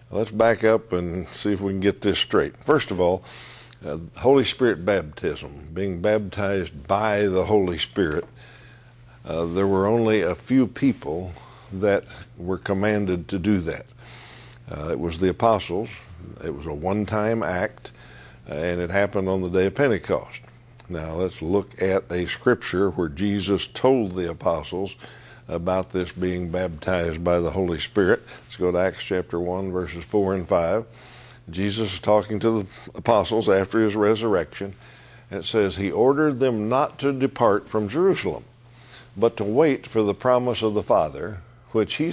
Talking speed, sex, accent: 165 wpm, male, American